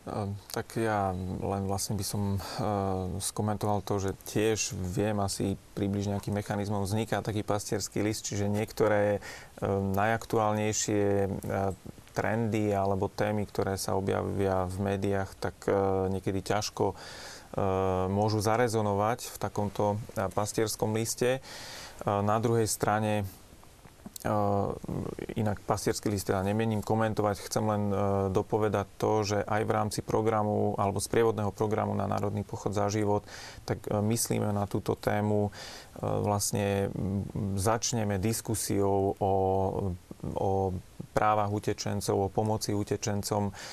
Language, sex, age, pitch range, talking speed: Slovak, male, 30-49, 100-110 Hz, 110 wpm